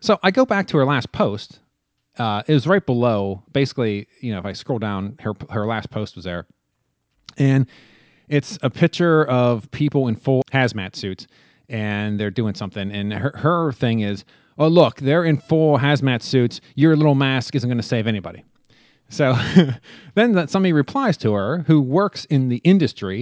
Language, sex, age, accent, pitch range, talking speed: English, male, 30-49, American, 115-155 Hz, 185 wpm